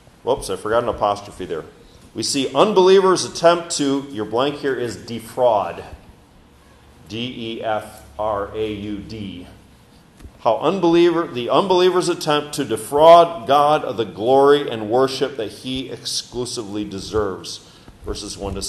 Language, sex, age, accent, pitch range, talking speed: English, male, 40-59, American, 110-160 Hz, 120 wpm